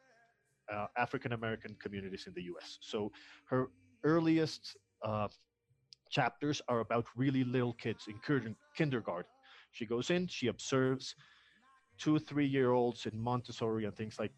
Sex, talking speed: male, 125 wpm